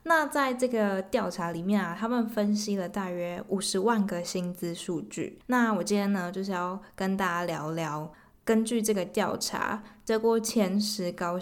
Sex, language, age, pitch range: female, Chinese, 20-39, 180-220 Hz